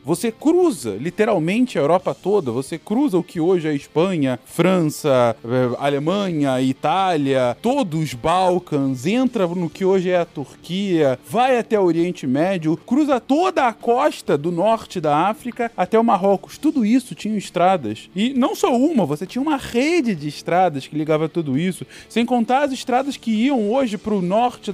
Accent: Brazilian